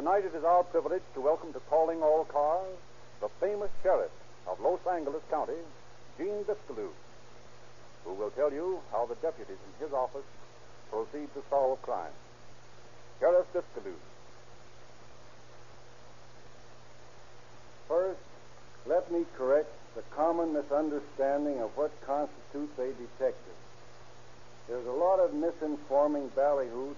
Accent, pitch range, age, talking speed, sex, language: American, 130-165 Hz, 60-79, 120 wpm, male, English